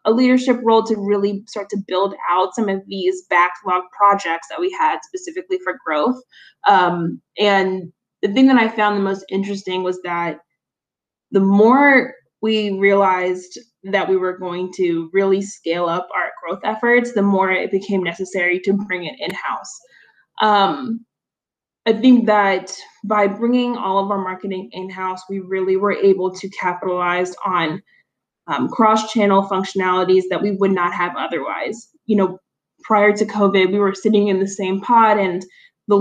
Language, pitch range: English, 185-215 Hz